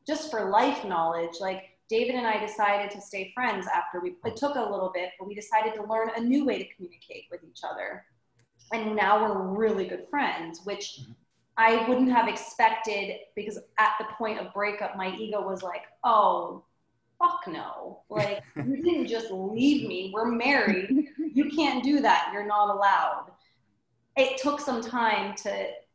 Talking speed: 175 wpm